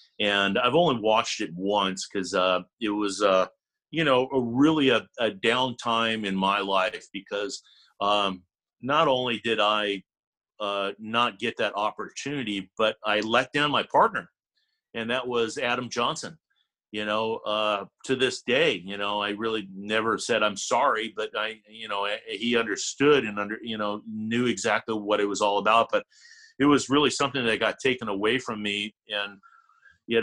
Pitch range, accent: 105-130 Hz, American